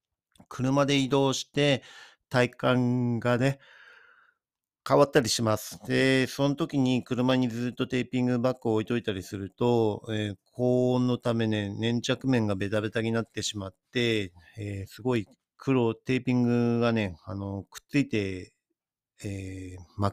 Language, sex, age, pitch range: Japanese, male, 50-69, 100-130 Hz